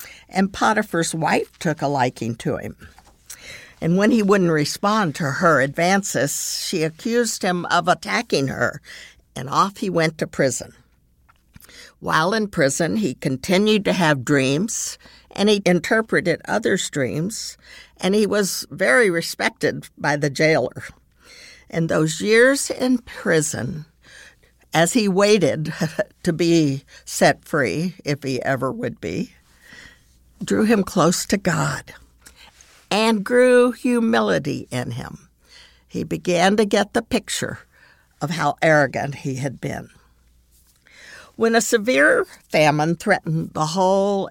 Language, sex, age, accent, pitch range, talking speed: English, female, 60-79, American, 145-210 Hz, 130 wpm